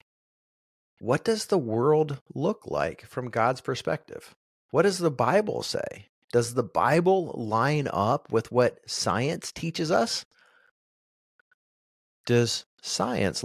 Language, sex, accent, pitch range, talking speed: English, male, American, 105-150 Hz, 115 wpm